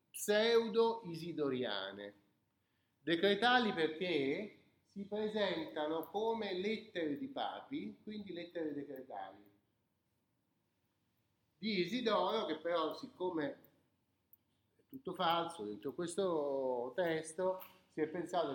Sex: male